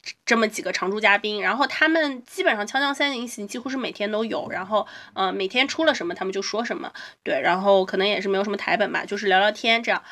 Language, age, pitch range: Chinese, 20-39, 200-260 Hz